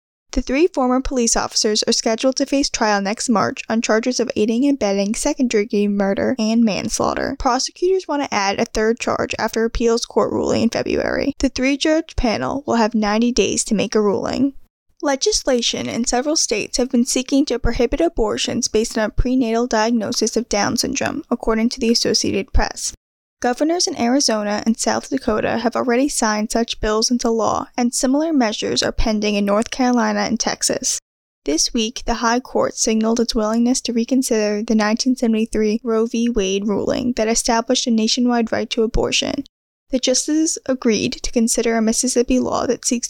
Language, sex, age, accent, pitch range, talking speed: English, female, 10-29, American, 220-255 Hz, 175 wpm